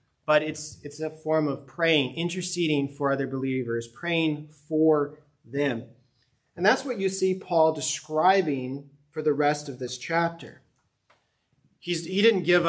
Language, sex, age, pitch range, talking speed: English, male, 30-49, 130-165 Hz, 145 wpm